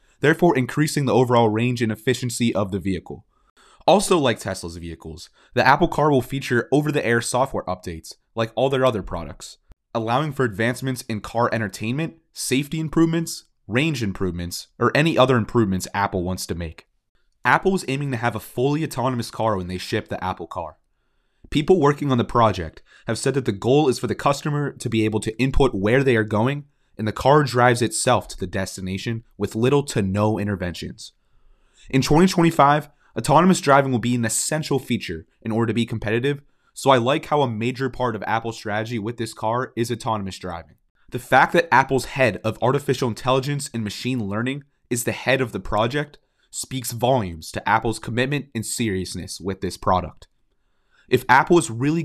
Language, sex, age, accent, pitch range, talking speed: English, male, 30-49, American, 105-135 Hz, 180 wpm